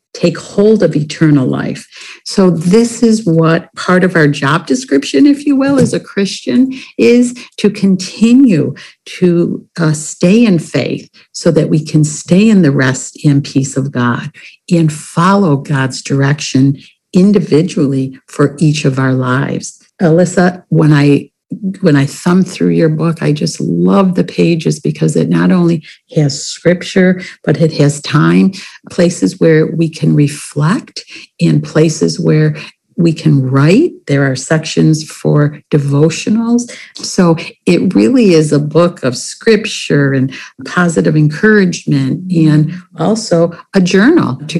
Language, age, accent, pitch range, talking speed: English, 60-79, American, 150-190 Hz, 145 wpm